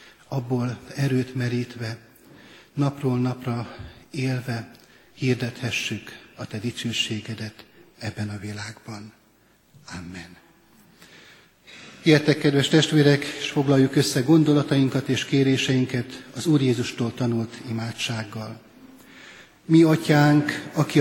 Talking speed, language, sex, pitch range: 90 wpm, Hungarian, male, 125-145 Hz